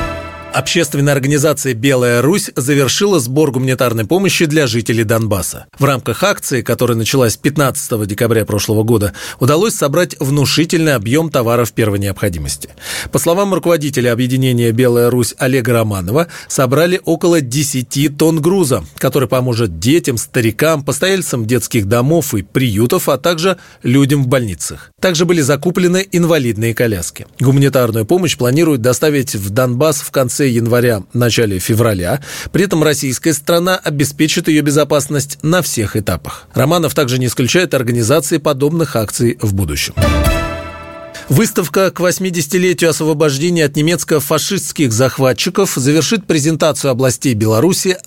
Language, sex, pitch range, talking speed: Russian, male, 115-160 Hz, 125 wpm